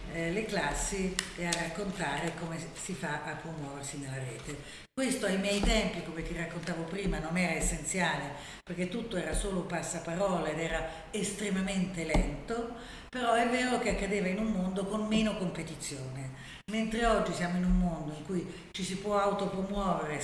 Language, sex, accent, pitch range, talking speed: Italian, female, native, 160-200 Hz, 165 wpm